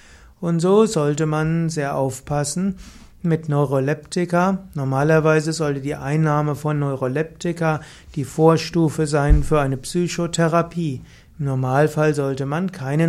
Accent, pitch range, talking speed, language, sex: German, 145-170 Hz, 115 wpm, German, male